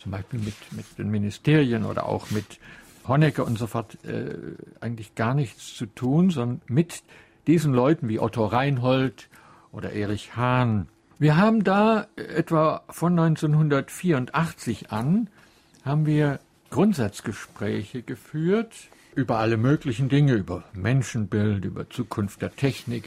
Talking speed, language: 130 wpm, German